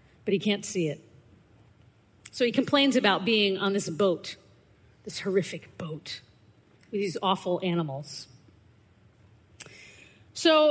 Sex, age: female, 40-59